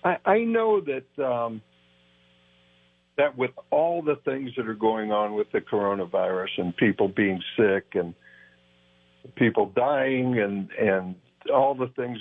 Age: 60-79